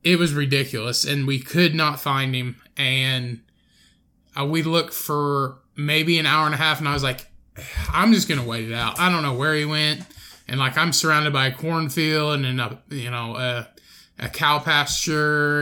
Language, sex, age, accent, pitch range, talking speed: English, male, 20-39, American, 135-155 Hz, 200 wpm